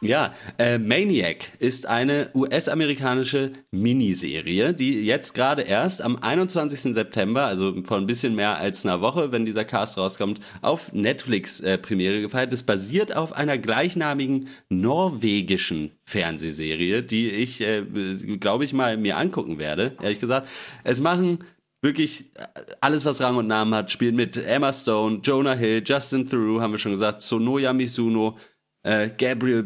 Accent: German